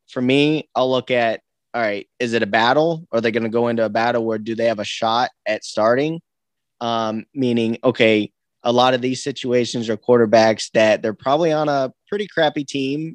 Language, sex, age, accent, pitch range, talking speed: English, male, 20-39, American, 115-135 Hz, 205 wpm